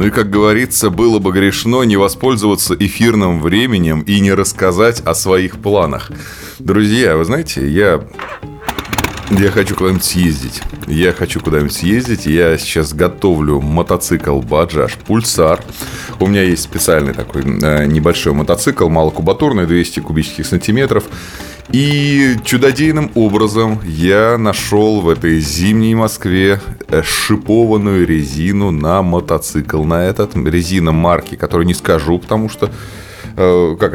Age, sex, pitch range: 20-39, male, 80-105 Hz